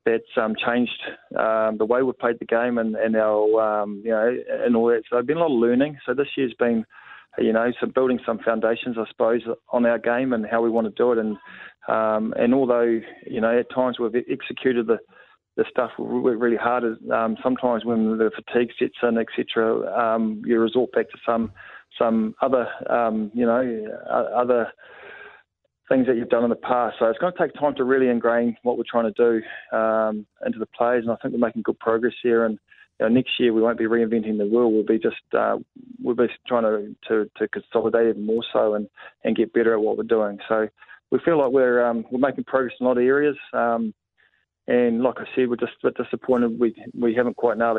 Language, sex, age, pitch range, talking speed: English, male, 20-39, 110-120 Hz, 225 wpm